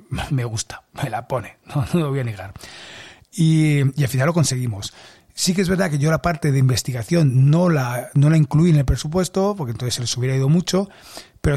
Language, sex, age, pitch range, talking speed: Spanish, male, 30-49, 130-160 Hz, 225 wpm